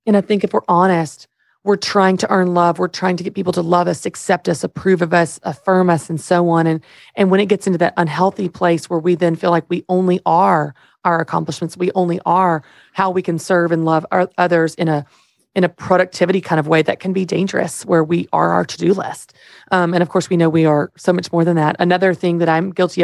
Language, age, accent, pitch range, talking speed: English, 30-49, American, 170-190 Hz, 245 wpm